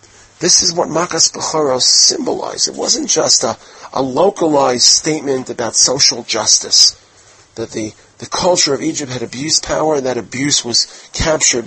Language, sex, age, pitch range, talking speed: English, male, 40-59, 120-145 Hz, 155 wpm